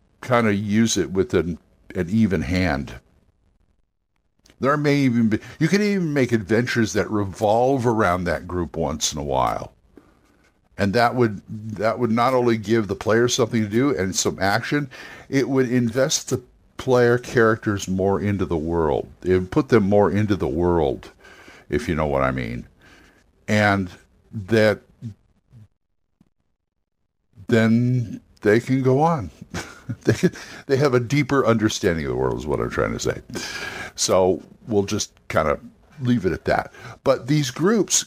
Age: 60-79